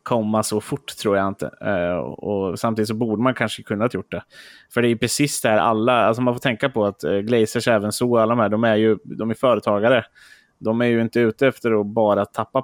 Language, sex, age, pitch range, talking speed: Swedish, male, 20-39, 100-115 Hz, 235 wpm